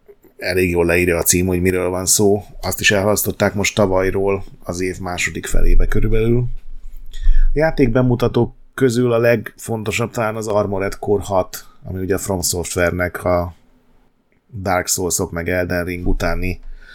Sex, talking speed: male, 145 wpm